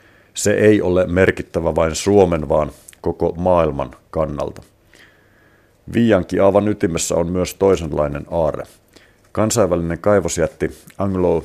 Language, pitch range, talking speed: Finnish, 80-95 Hz, 105 wpm